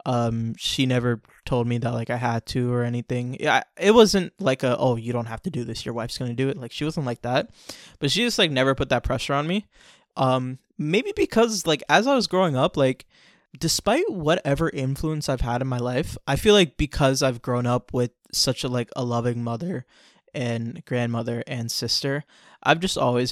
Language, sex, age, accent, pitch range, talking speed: English, male, 20-39, American, 120-140 Hz, 215 wpm